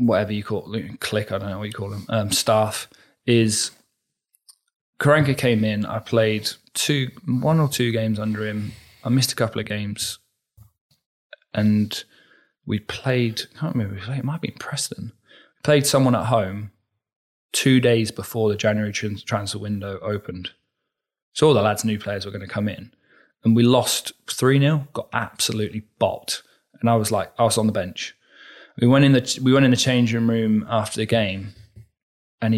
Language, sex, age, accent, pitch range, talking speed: English, male, 20-39, British, 105-125 Hz, 180 wpm